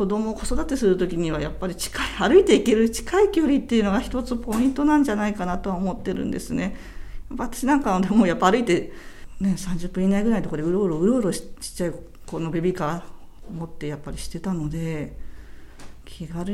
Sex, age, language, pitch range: female, 50-69, Japanese, 160-230 Hz